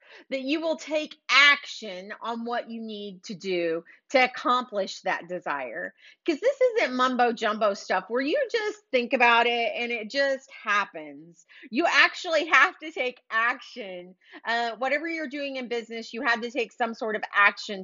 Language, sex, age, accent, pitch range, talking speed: English, female, 30-49, American, 210-285 Hz, 170 wpm